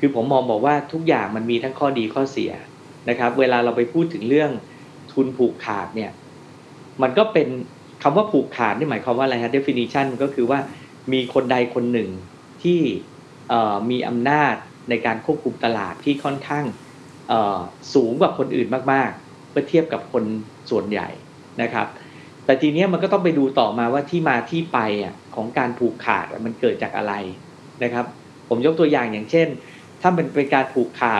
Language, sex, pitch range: Thai, male, 120-150 Hz